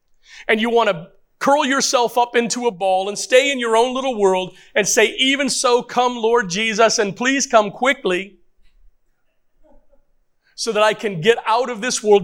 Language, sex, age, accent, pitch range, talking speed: English, male, 40-59, American, 195-250 Hz, 180 wpm